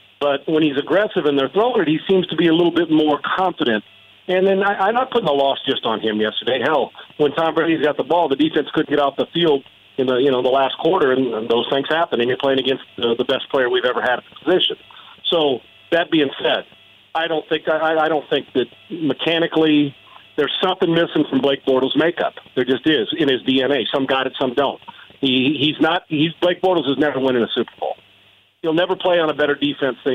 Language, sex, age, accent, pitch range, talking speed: English, male, 50-69, American, 135-165 Hz, 240 wpm